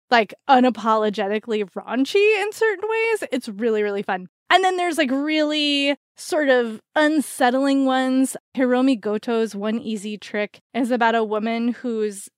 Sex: female